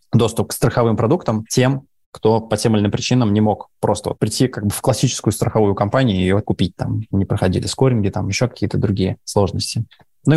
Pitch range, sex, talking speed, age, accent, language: 100-125 Hz, male, 205 wpm, 20-39, native, Russian